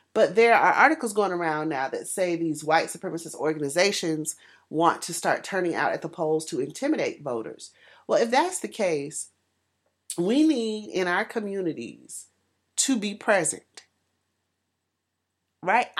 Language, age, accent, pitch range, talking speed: English, 40-59, American, 160-225 Hz, 145 wpm